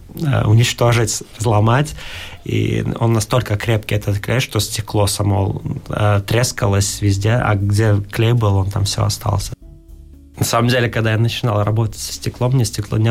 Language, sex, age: Russian, male, 20-39